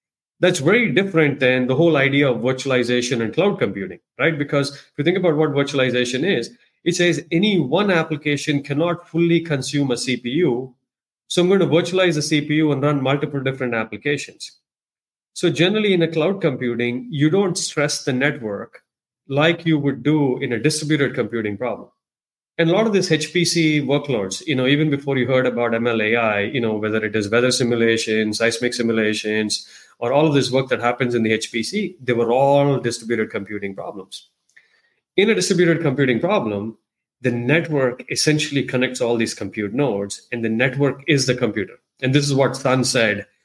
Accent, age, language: Indian, 30-49, English